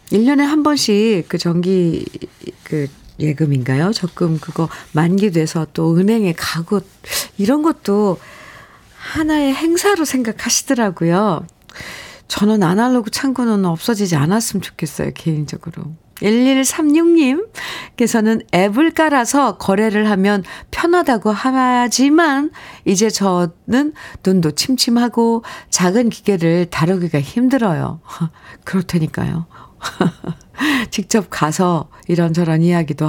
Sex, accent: female, native